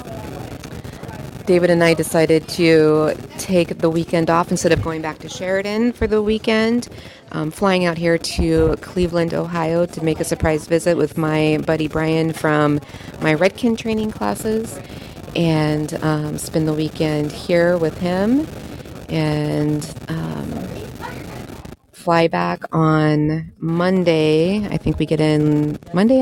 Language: English